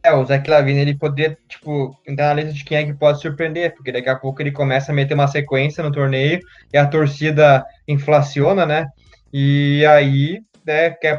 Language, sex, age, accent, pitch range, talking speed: Portuguese, male, 10-29, Brazilian, 145-180 Hz, 200 wpm